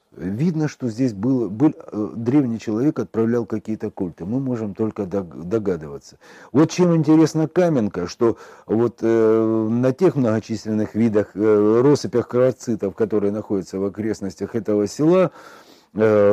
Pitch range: 95-125 Hz